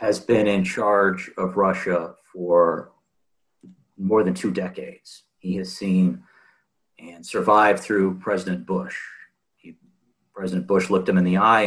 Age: 50-69